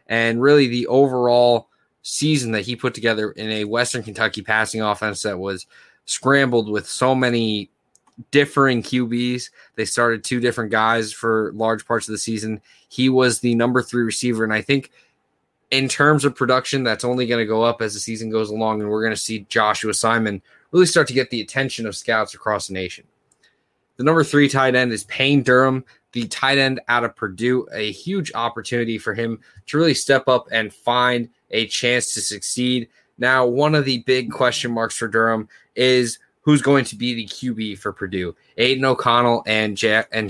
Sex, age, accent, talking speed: male, 20-39, American, 190 wpm